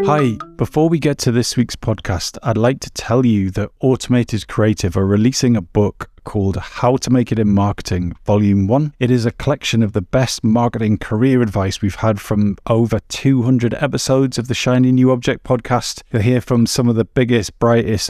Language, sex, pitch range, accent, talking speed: English, male, 100-125 Hz, British, 195 wpm